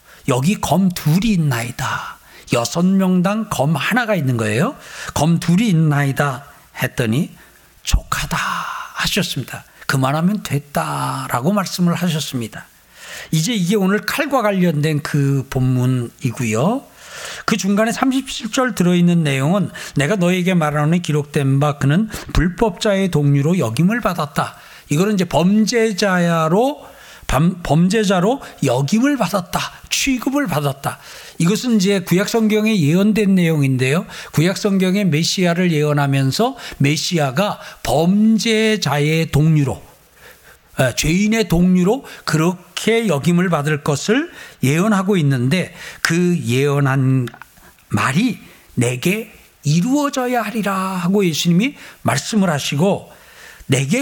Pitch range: 150-215 Hz